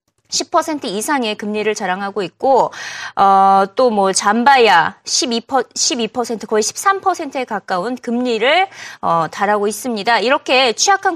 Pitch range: 225-345 Hz